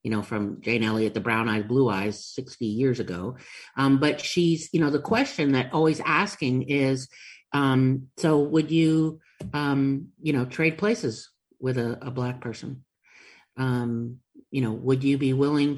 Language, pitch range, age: English, 130-170 Hz, 50-69